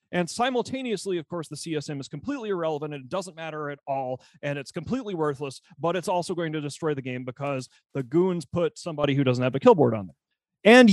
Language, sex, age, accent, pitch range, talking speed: English, male, 40-59, American, 160-245 Hz, 225 wpm